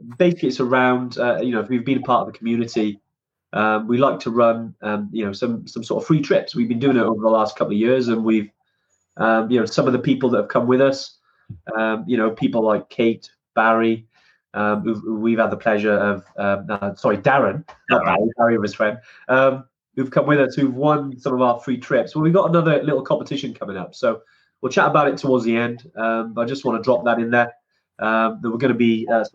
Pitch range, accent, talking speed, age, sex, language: 110-140 Hz, British, 245 wpm, 20-39, male, English